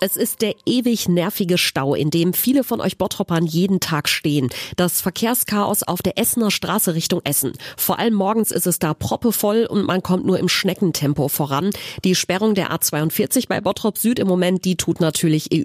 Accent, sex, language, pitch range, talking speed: German, female, German, 165-215 Hz, 190 wpm